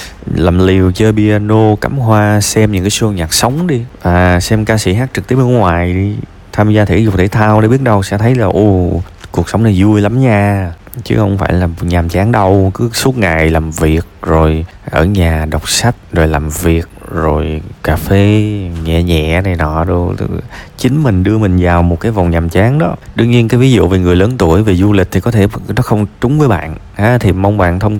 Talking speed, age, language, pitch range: 225 wpm, 20-39, Vietnamese, 90-115 Hz